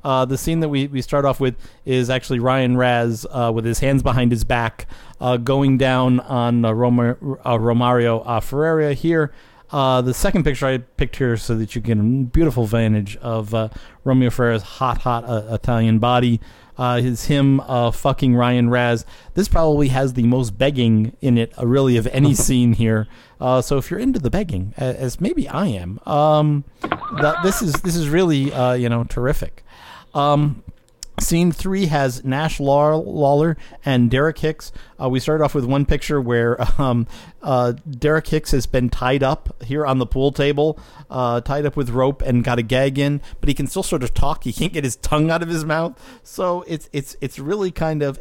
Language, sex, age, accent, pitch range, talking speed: English, male, 40-59, American, 120-145 Hz, 195 wpm